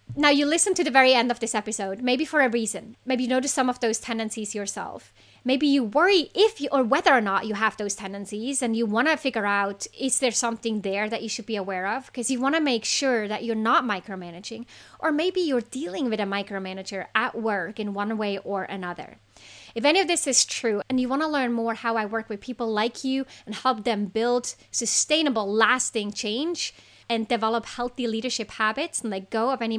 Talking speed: 220 wpm